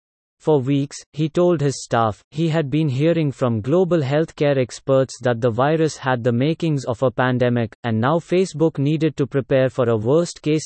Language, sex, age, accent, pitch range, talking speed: English, male, 30-49, Indian, 130-160 Hz, 180 wpm